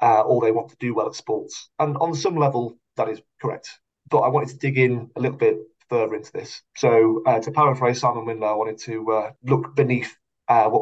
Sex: male